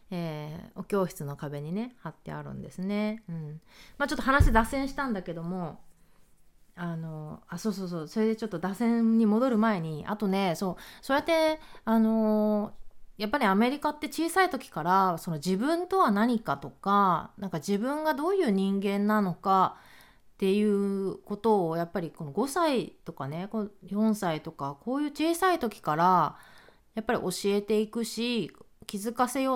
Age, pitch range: 30-49, 175-245 Hz